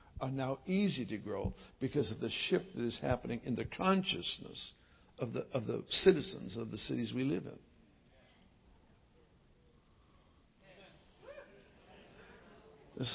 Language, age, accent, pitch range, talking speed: English, 60-79, American, 110-135 Hz, 125 wpm